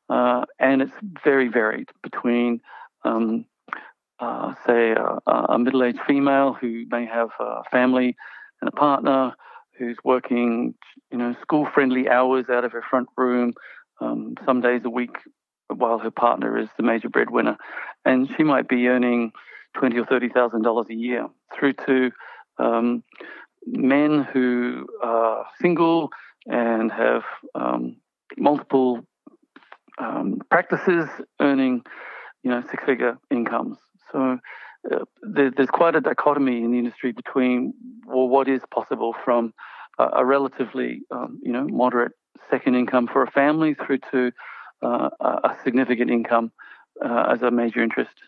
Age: 50-69